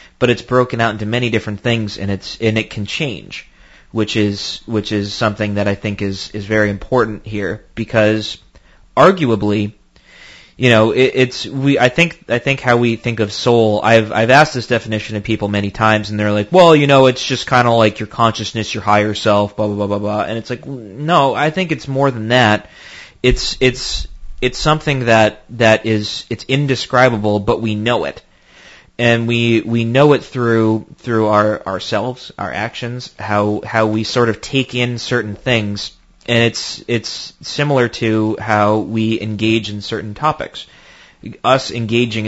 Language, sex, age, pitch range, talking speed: English, male, 20-39, 105-125 Hz, 180 wpm